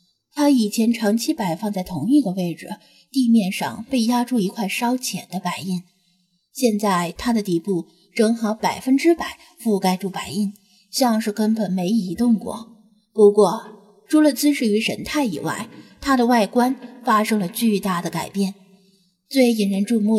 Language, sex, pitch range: Chinese, female, 195-265 Hz